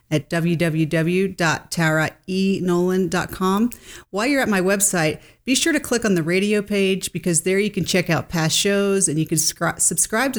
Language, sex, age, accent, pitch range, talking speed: English, female, 40-59, American, 165-200 Hz, 170 wpm